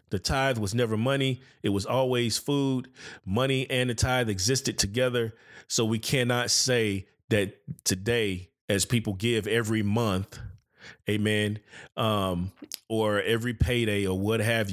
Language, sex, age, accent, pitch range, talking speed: English, male, 30-49, American, 105-130 Hz, 140 wpm